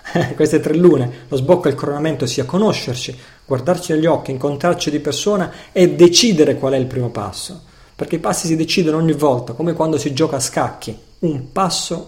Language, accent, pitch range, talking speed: Italian, native, 125-155 Hz, 190 wpm